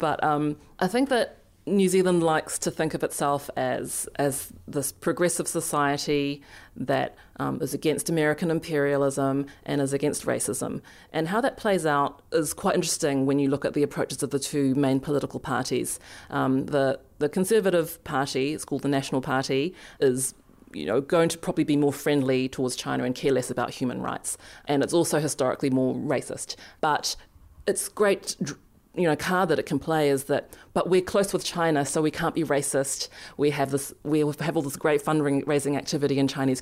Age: 30-49